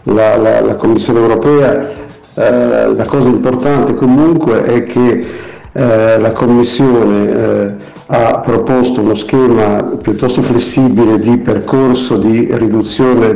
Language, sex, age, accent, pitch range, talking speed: Italian, male, 50-69, native, 115-130 Hz, 115 wpm